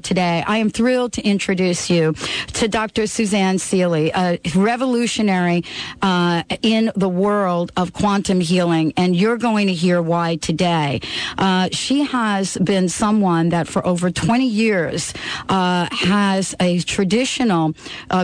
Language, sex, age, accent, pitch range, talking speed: English, female, 50-69, American, 180-225 Hz, 140 wpm